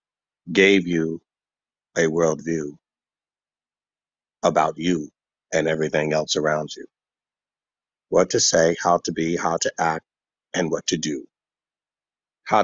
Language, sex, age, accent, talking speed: English, male, 50-69, American, 120 wpm